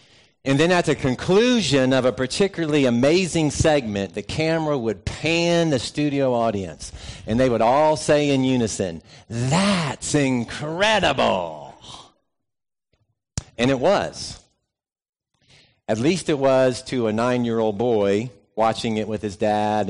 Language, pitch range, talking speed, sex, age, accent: English, 110-145 Hz, 125 wpm, male, 50-69, American